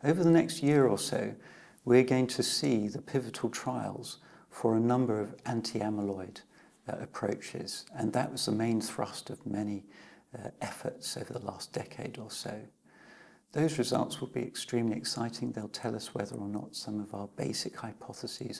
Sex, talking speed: male, 170 wpm